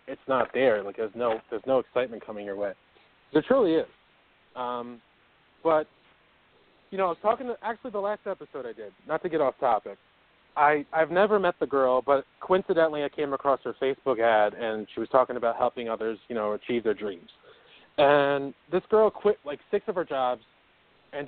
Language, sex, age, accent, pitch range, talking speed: English, male, 30-49, American, 125-165 Hz, 195 wpm